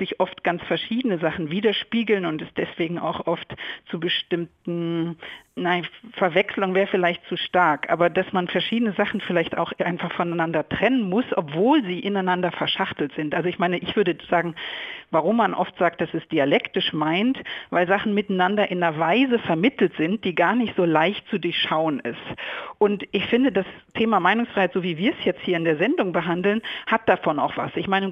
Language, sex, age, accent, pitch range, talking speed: German, female, 50-69, German, 165-205 Hz, 185 wpm